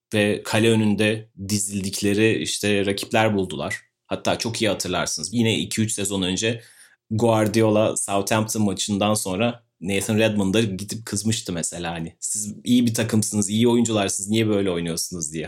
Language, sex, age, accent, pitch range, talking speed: Turkish, male, 30-49, native, 100-120 Hz, 135 wpm